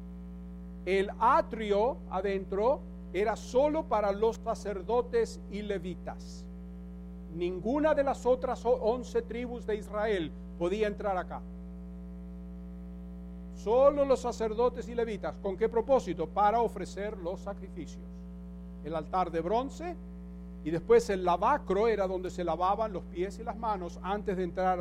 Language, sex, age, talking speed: English, male, 50-69, 130 wpm